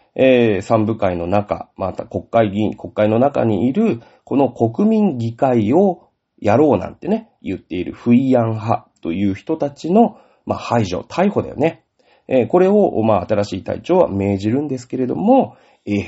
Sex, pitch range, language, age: male, 100-150 Hz, Japanese, 40-59